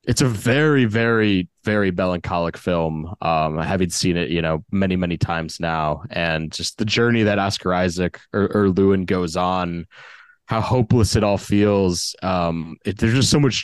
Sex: male